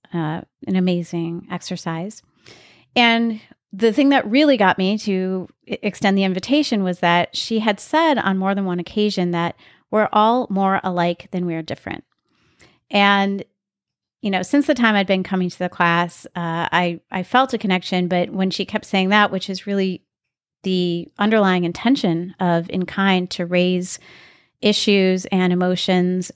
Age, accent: 30-49, American